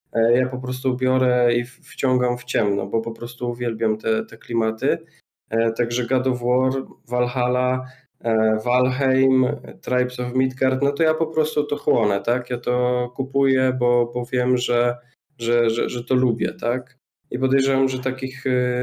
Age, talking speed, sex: 20-39, 155 wpm, male